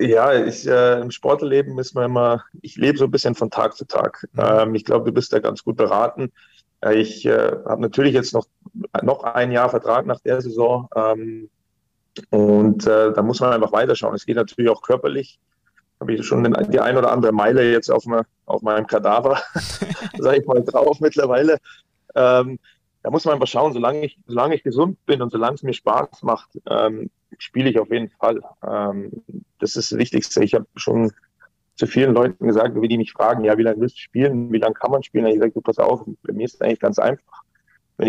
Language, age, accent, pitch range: German, 30-49, German, 110-125 Hz